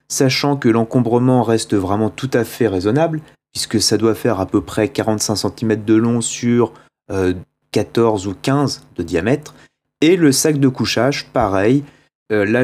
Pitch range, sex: 110-145 Hz, male